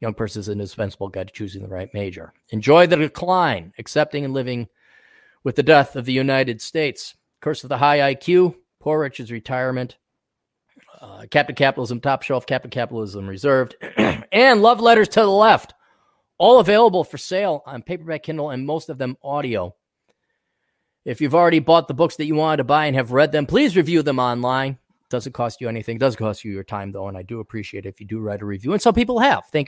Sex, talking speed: male, 210 wpm